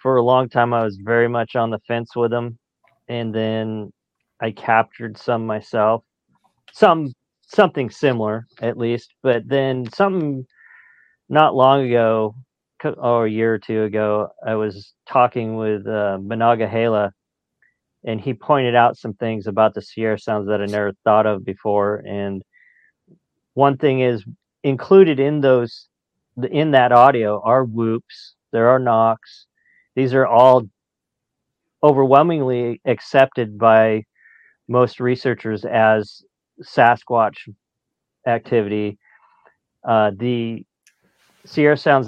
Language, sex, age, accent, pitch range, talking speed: English, male, 40-59, American, 110-125 Hz, 125 wpm